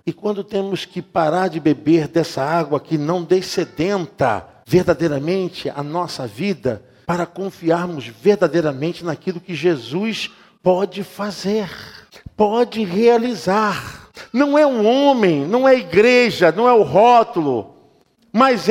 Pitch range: 190-260 Hz